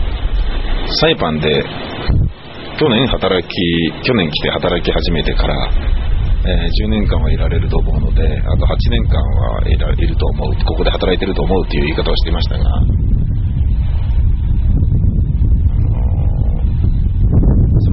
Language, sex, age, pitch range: Japanese, male, 40-59, 80-100 Hz